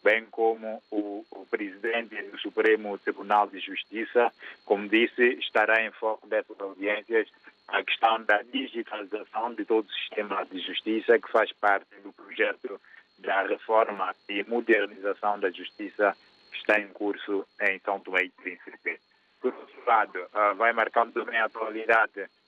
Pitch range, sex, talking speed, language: 100-115 Hz, male, 145 wpm, Portuguese